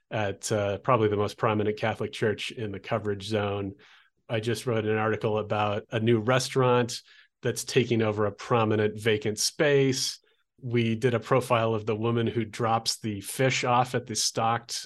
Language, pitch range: English, 110-125 Hz